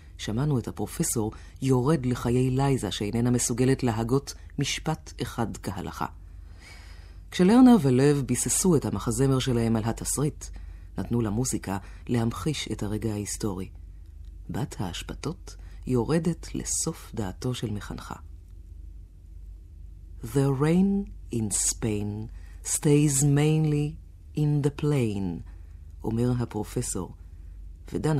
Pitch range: 85-140 Hz